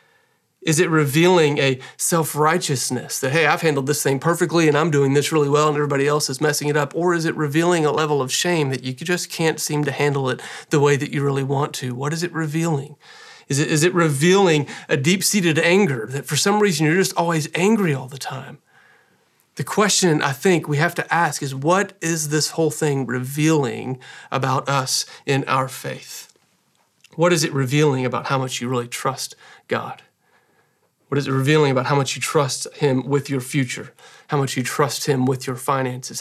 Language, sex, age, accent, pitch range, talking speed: English, male, 40-59, American, 135-160 Hz, 200 wpm